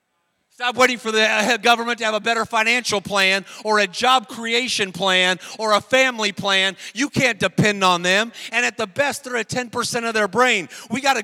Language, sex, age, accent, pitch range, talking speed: English, male, 40-59, American, 200-245 Hz, 210 wpm